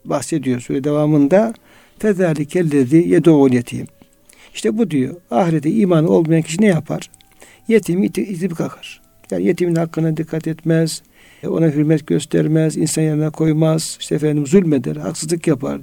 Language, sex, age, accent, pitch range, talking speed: Turkish, male, 60-79, native, 155-185 Hz, 130 wpm